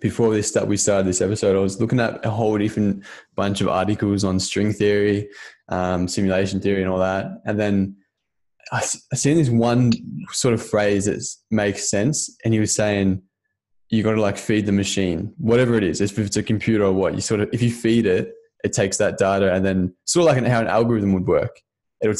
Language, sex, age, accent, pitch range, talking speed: English, male, 10-29, Australian, 95-115 Hz, 225 wpm